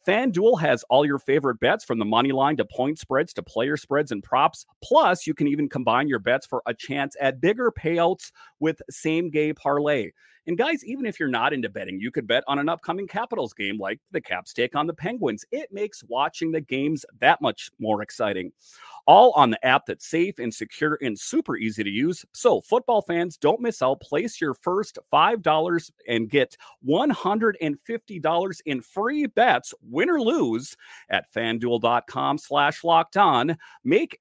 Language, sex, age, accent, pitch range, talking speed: English, male, 30-49, American, 120-165 Hz, 185 wpm